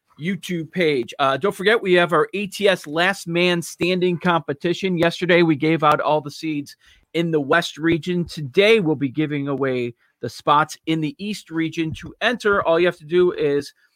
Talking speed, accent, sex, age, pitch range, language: 185 wpm, American, male, 40-59, 140-175 Hz, English